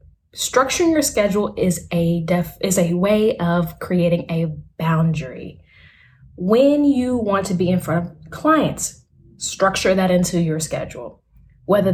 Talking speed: 140 wpm